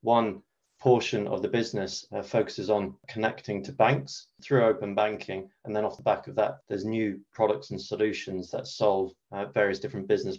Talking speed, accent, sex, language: 185 wpm, British, male, English